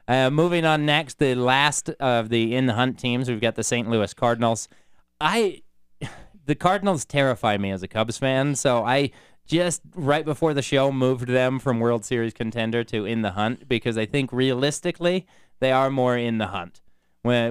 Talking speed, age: 170 wpm, 20-39